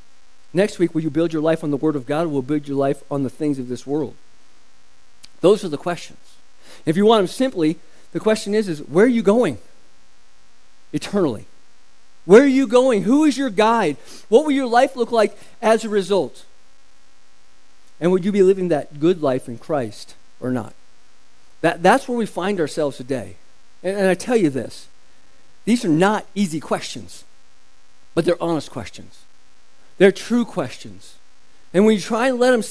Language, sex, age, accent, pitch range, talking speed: English, male, 50-69, American, 155-235 Hz, 190 wpm